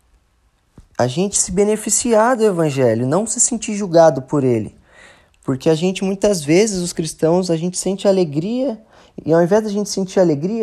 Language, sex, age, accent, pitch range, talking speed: Portuguese, male, 20-39, Brazilian, 130-180 Hz, 170 wpm